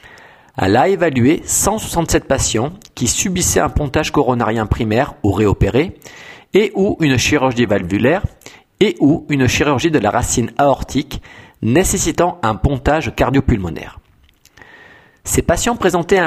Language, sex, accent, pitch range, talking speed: English, male, French, 115-165 Hz, 120 wpm